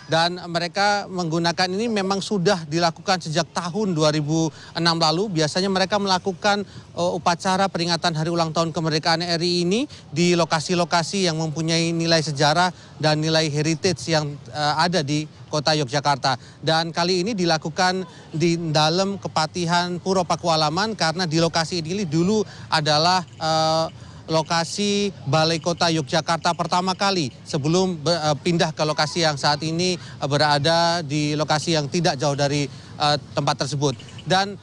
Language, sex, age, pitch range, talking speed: Indonesian, male, 30-49, 155-180 Hz, 135 wpm